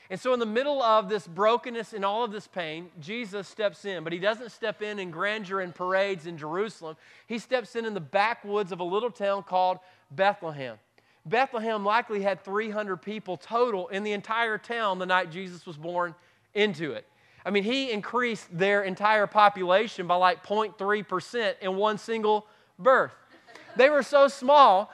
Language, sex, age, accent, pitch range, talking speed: English, male, 30-49, American, 185-220 Hz, 180 wpm